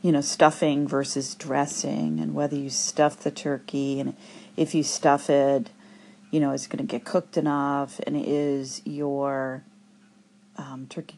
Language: English